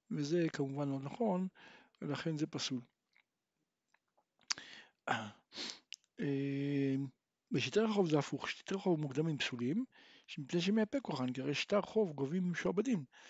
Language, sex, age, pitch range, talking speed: Hebrew, male, 60-79, 150-205 Hz, 115 wpm